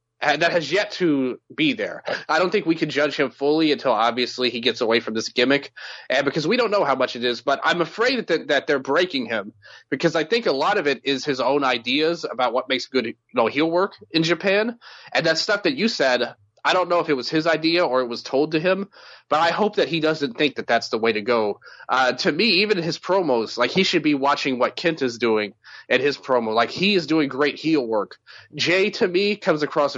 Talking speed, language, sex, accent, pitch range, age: 250 wpm, English, male, American, 125-170 Hz, 30-49